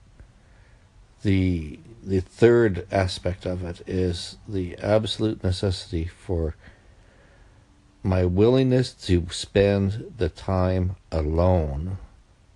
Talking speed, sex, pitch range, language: 85 wpm, male, 90-105 Hz, English